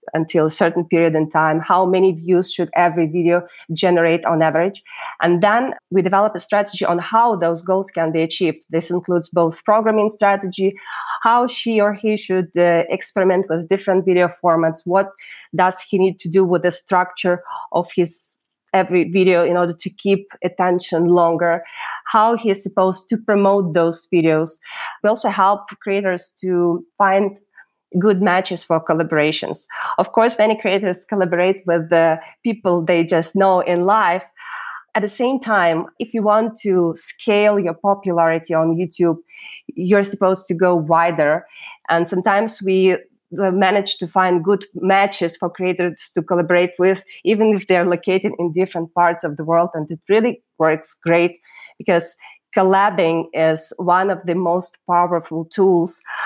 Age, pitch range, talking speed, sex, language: 20-39, 170-200 Hz, 160 wpm, female, English